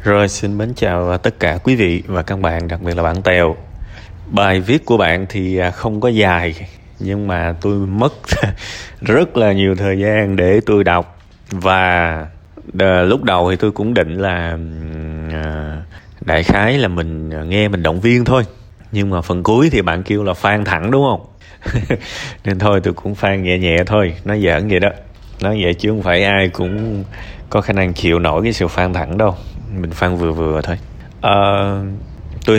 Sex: male